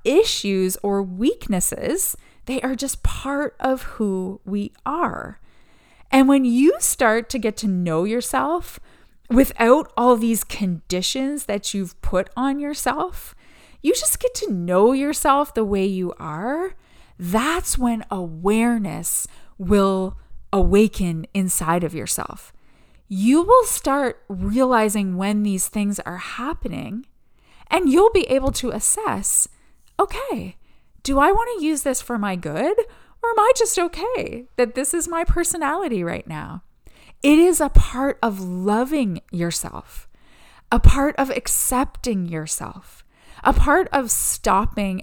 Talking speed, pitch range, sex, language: 135 wpm, 195-280 Hz, female, English